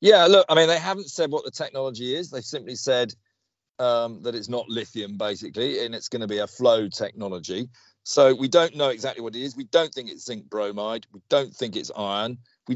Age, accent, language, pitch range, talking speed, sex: 40-59, British, English, 115-155 Hz, 225 wpm, male